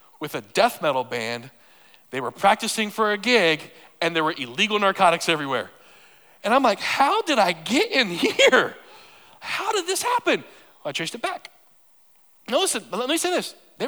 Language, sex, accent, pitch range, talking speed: English, male, American, 165-270 Hz, 180 wpm